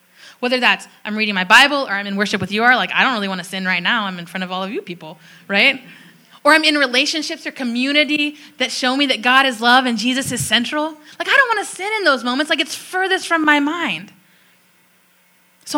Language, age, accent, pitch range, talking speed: English, 10-29, American, 195-285 Hz, 245 wpm